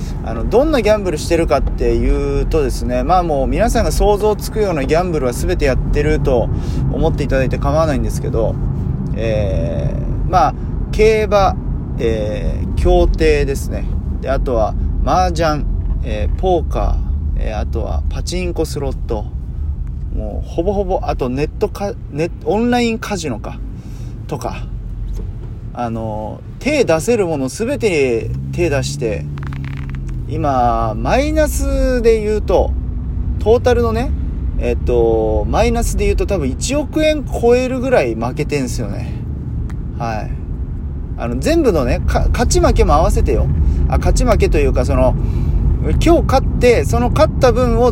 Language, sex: Japanese, male